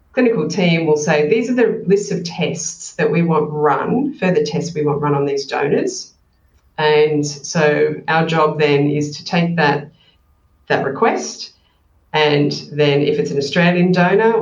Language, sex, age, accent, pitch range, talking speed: English, female, 30-49, Australian, 145-180 Hz, 165 wpm